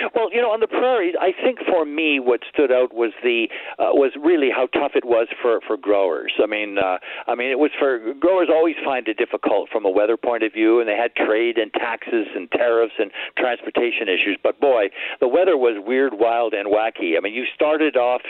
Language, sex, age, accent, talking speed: English, male, 60-79, American, 225 wpm